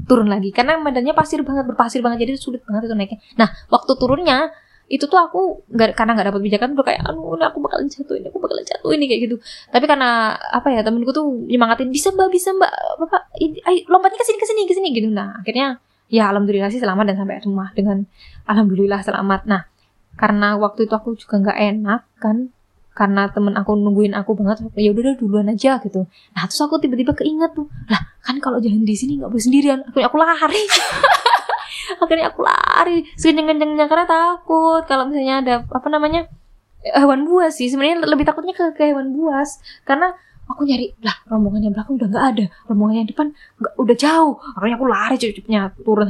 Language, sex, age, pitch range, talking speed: Indonesian, female, 10-29, 215-305 Hz, 195 wpm